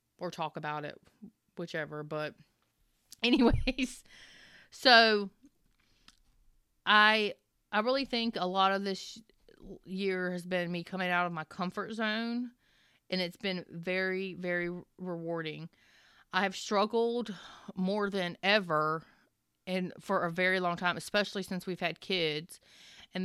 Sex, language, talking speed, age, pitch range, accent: female, English, 130 wpm, 30-49, 170-195 Hz, American